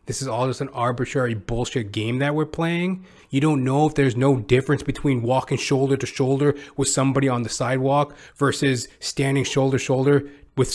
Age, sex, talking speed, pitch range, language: 20-39, male, 190 wpm, 130-165 Hz, English